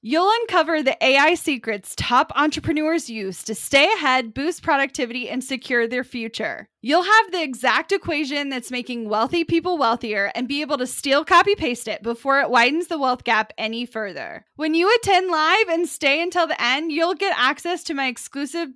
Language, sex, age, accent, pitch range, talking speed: English, female, 10-29, American, 230-315 Hz, 185 wpm